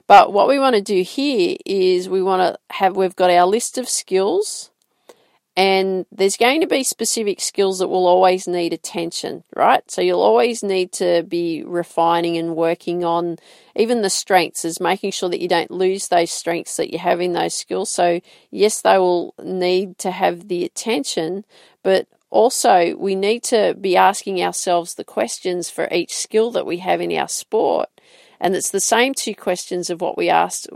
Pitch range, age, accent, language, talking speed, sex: 175-215 Hz, 40-59, Australian, English, 190 wpm, female